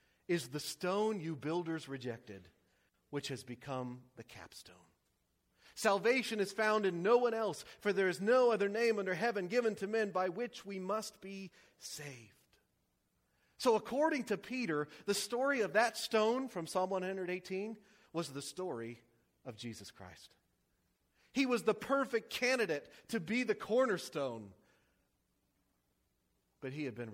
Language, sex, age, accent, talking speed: English, male, 40-59, American, 145 wpm